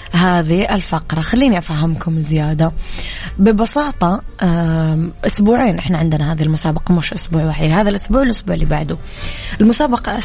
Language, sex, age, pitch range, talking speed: Arabic, female, 20-39, 165-205 Hz, 125 wpm